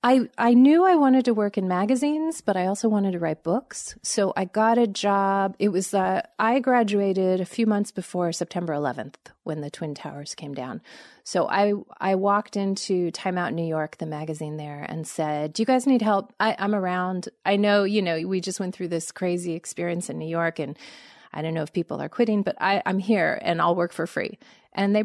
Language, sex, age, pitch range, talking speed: English, female, 30-49, 165-215 Hz, 220 wpm